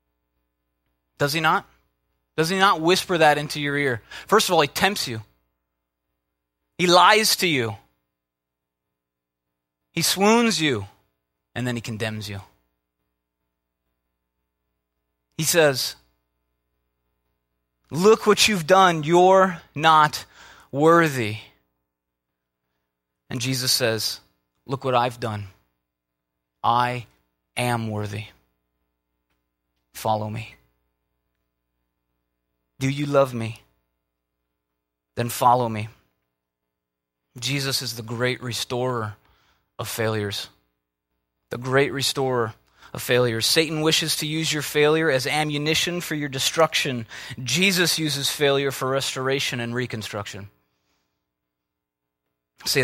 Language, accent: English, American